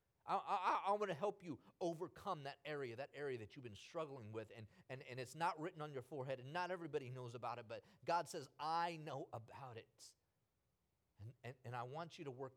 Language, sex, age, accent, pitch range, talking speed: English, male, 30-49, American, 120-160 Hz, 220 wpm